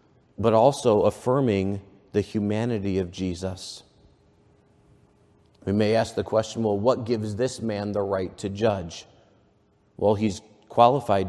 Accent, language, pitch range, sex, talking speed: American, English, 100-115 Hz, male, 130 wpm